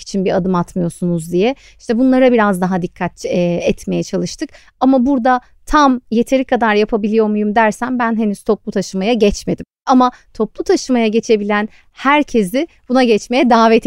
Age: 30-49